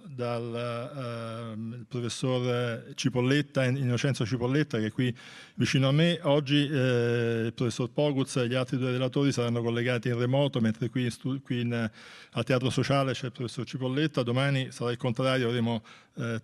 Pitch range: 120-135 Hz